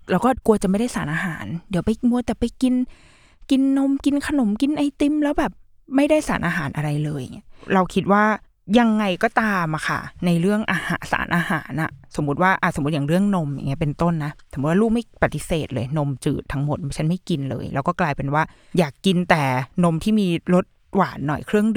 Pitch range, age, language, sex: 155-220 Hz, 20-39, Thai, female